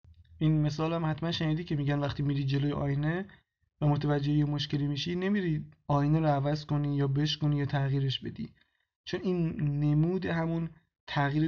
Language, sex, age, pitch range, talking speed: Persian, male, 20-39, 140-155 Hz, 160 wpm